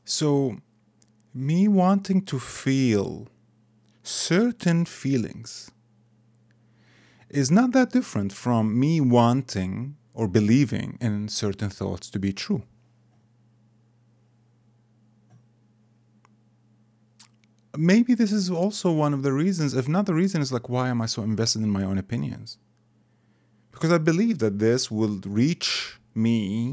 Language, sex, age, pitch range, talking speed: English, male, 30-49, 110-125 Hz, 120 wpm